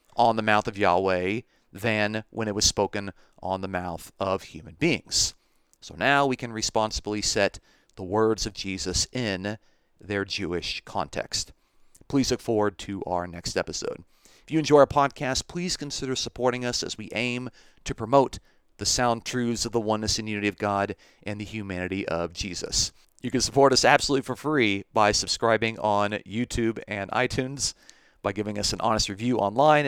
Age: 40-59